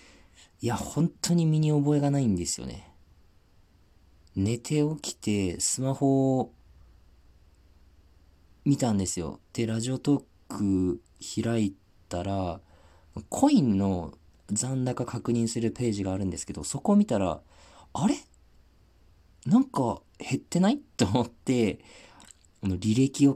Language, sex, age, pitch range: Japanese, male, 40-59, 85-125 Hz